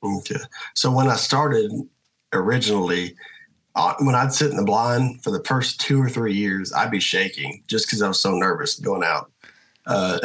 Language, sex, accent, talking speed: English, male, American, 180 wpm